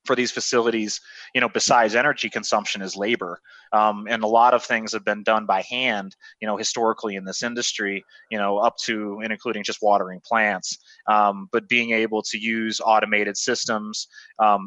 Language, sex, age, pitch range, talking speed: English, male, 20-39, 105-120 Hz, 185 wpm